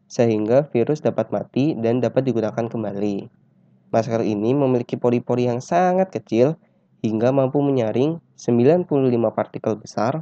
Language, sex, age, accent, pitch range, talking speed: Indonesian, male, 20-39, native, 110-130 Hz, 125 wpm